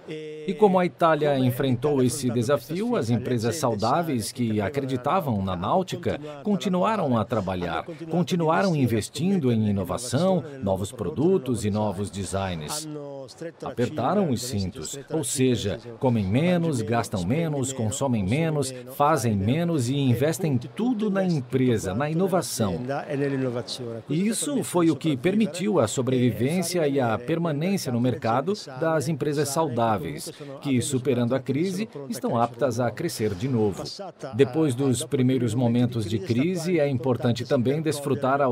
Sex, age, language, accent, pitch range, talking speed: male, 50-69, Portuguese, Brazilian, 115-160 Hz, 130 wpm